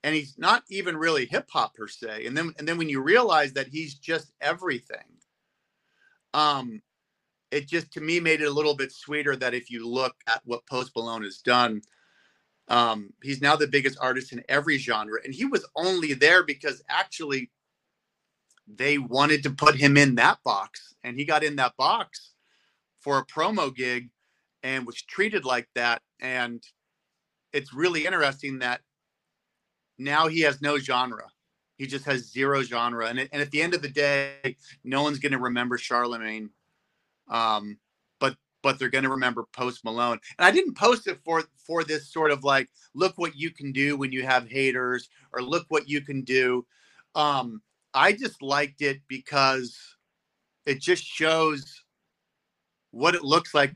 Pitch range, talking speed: 125-150 Hz, 175 wpm